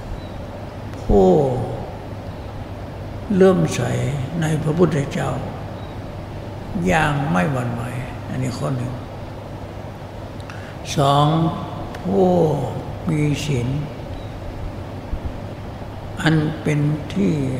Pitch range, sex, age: 105-140 Hz, male, 60-79